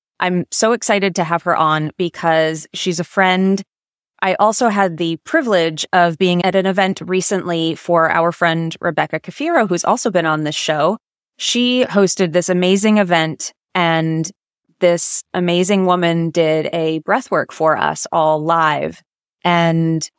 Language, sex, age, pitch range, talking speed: English, female, 20-39, 160-185 Hz, 150 wpm